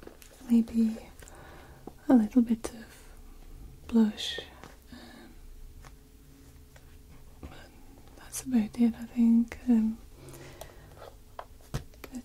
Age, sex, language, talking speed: 20-39, female, English, 75 wpm